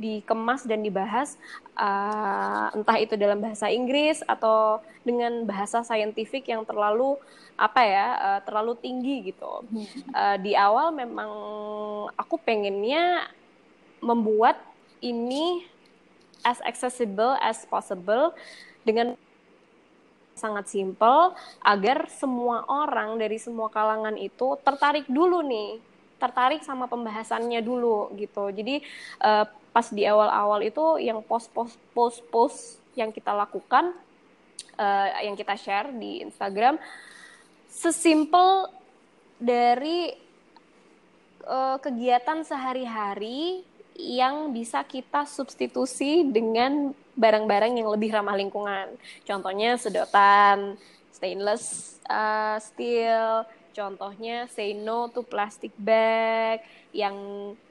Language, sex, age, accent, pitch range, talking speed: Indonesian, female, 20-39, native, 210-260 Hz, 100 wpm